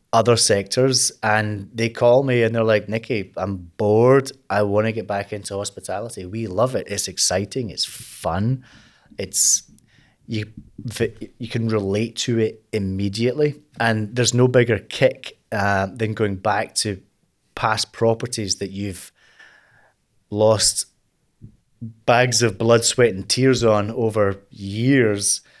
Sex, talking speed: male, 135 wpm